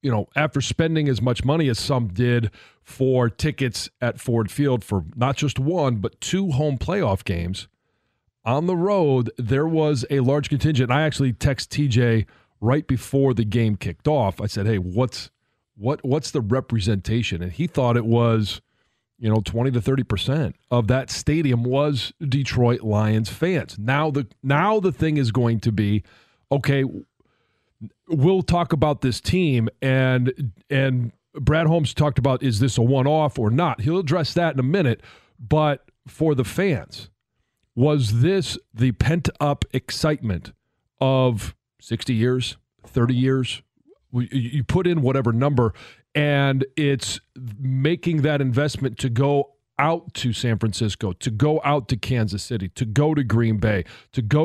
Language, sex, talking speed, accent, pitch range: English, male, 160 wpm, American, 115-145 Hz